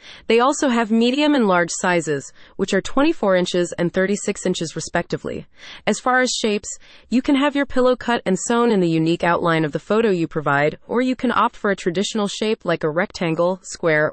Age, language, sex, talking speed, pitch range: 30-49, English, female, 205 wpm, 175-235 Hz